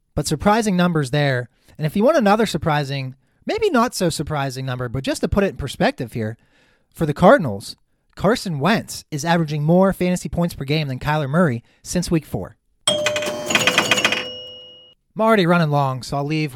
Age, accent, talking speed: 30-49, American, 175 wpm